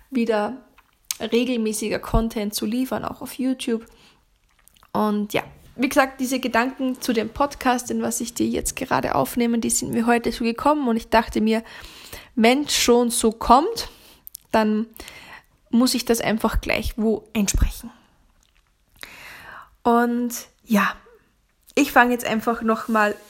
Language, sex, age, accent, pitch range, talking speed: German, female, 10-29, German, 225-255 Hz, 135 wpm